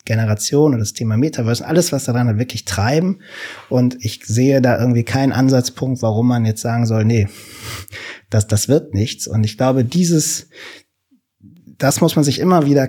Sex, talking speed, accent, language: male, 170 wpm, German, German